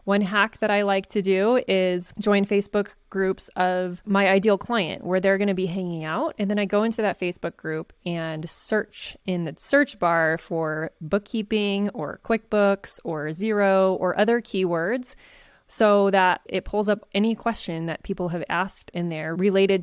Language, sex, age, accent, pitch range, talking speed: English, female, 20-39, American, 180-215 Hz, 180 wpm